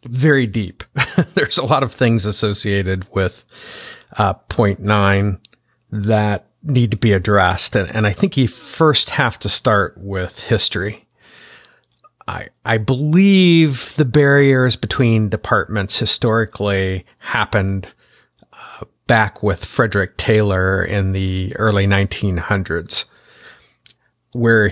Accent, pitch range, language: American, 100-120 Hz, English